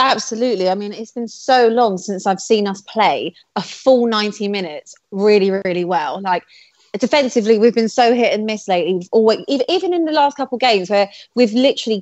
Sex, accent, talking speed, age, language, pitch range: female, British, 200 wpm, 30-49, English, 190-225 Hz